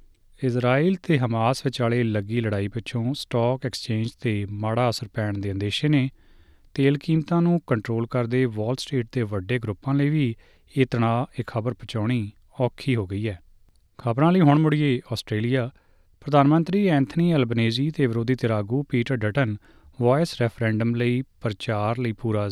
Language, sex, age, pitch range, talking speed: Punjabi, male, 30-49, 110-135 Hz, 150 wpm